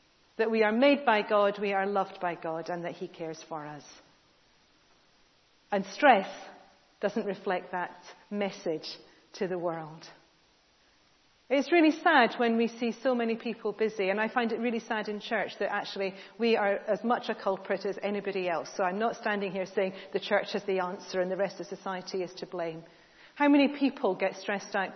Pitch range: 185-230 Hz